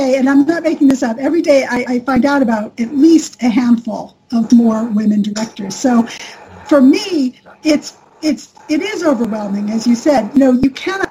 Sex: female